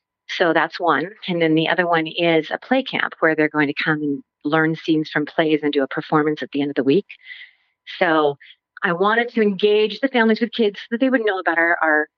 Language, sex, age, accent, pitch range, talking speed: English, female, 40-59, American, 155-220 Hz, 240 wpm